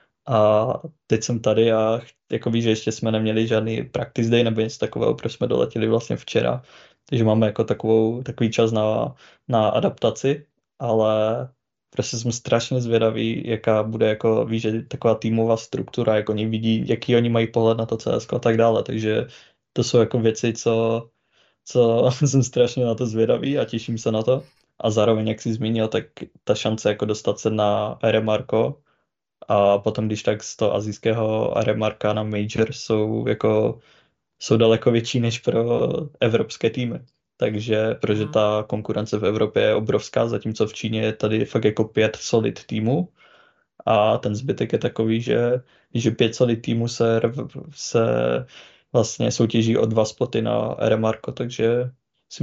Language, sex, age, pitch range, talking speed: Czech, male, 20-39, 110-120 Hz, 165 wpm